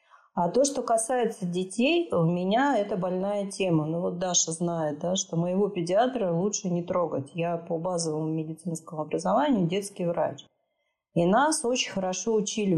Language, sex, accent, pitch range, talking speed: Russian, female, native, 170-215 Hz, 155 wpm